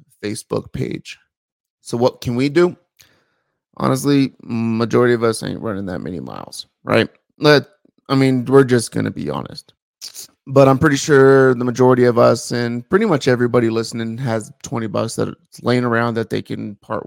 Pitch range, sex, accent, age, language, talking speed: 115-135 Hz, male, American, 30-49, English, 175 wpm